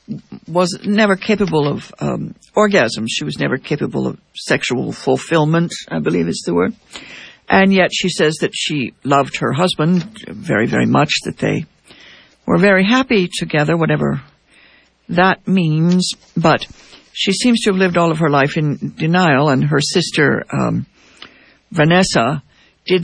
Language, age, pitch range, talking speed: English, 60-79, 140-185 Hz, 150 wpm